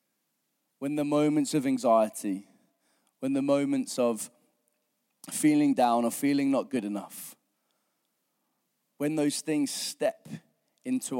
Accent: British